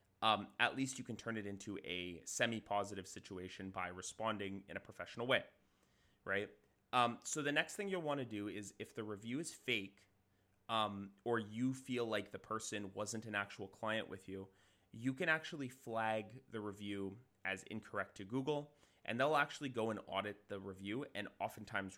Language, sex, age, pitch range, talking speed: English, male, 30-49, 95-125 Hz, 180 wpm